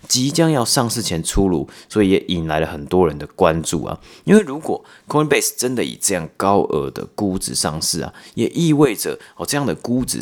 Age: 30-49